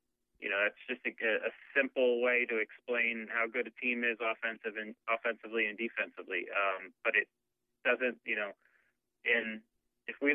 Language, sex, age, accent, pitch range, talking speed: English, male, 30-49, American, 110-125 Hz, 170 wpm